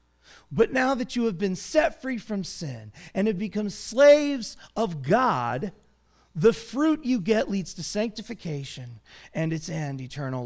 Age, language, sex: 30-49, English, male